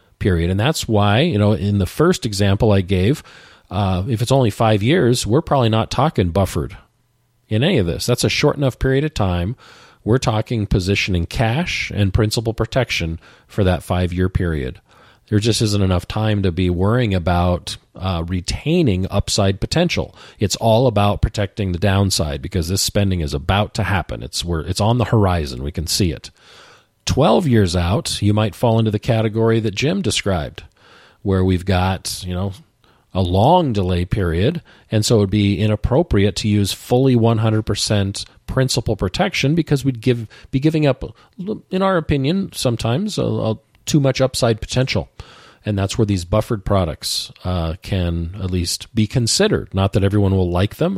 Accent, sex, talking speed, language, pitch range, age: American, male, 175 wpm, English, 95-120 Hz, 40-59